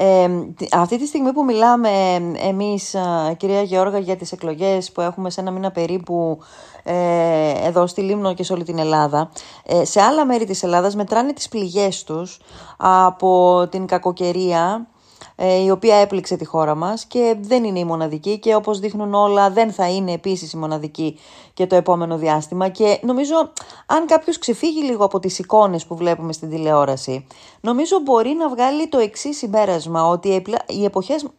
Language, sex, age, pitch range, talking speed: Greek, female, 30-49, 175-230 Hz, 165 wpm